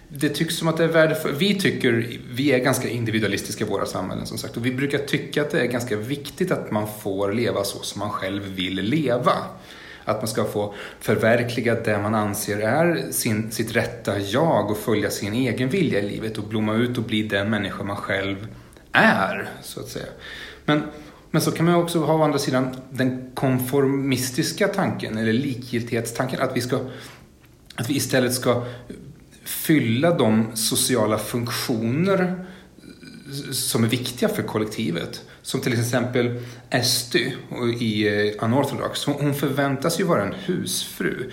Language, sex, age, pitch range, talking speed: Swedish, male, 30-49, 110-145 Hz, 165 wpm